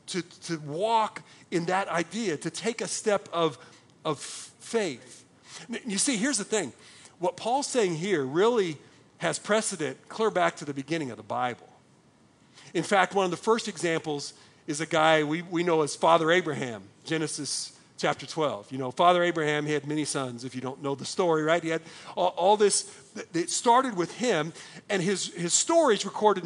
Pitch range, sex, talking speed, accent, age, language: 155-215 Hz, male, 185 wpm, American, 50-69, English